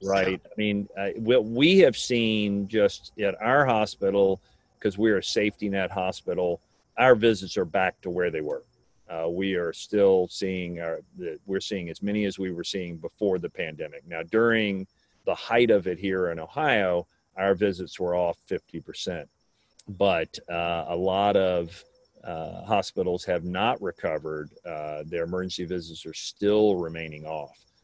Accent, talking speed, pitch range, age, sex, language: American, 160 wpm, 90-110 Hz, 40-59, male, English